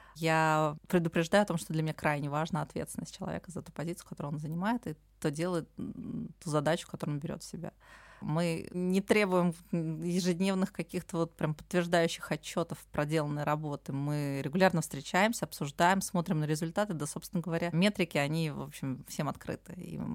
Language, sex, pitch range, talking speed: Russian, female, 160-200 Hz, 165 wpm